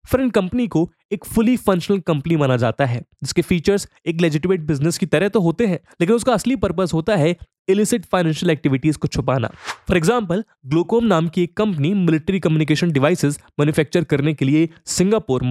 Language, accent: English, Indian